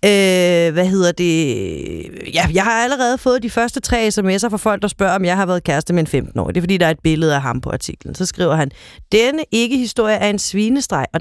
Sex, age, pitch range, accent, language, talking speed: female, 30-49, 165-230 Hz, native, Danish, 240 wpm